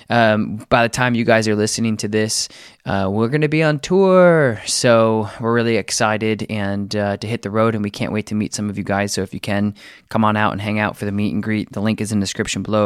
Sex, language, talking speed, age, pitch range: male, English, 275 wpm, 20-39, 100-115 Hz